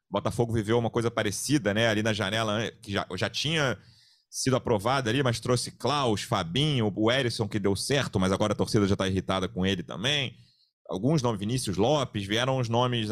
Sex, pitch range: male, 95-120 Hz